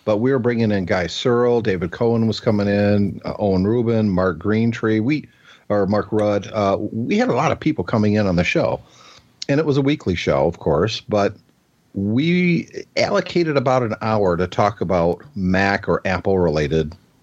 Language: English